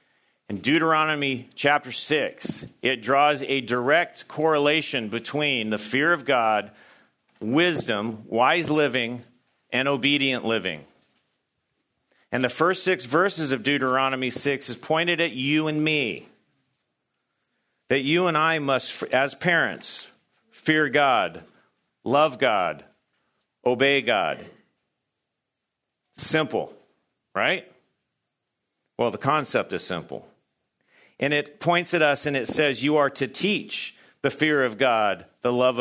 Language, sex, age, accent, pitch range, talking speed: English, male, 40-59, American, 125-150 Hz, 120 wpm